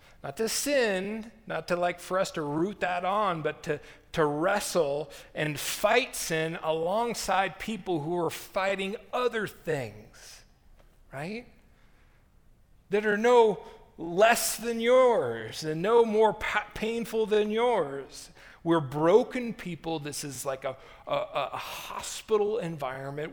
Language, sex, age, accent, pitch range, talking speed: English, male, 40-59, American, 140-200 Hz, 130 wpm